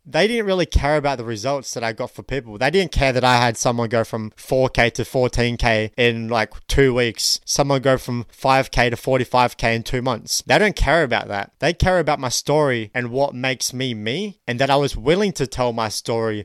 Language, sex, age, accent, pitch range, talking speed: English, male, 20-39, Australian, 115-145 Hz, 225 wpm